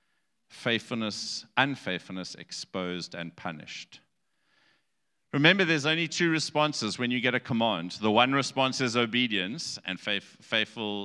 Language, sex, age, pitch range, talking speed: English, male, 50-69, 90-135 Hz, 120 wpm